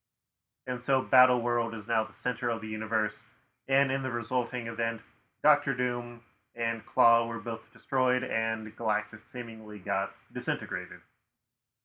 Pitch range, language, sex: 110-125 Hz, English, male